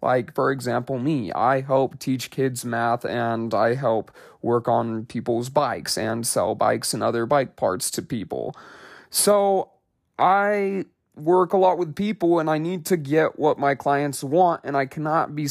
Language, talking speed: English, 175 wpm